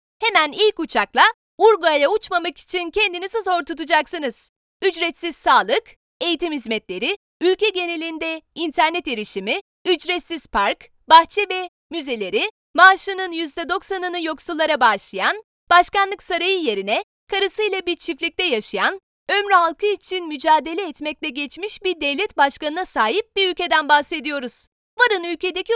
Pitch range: 310-395 Hz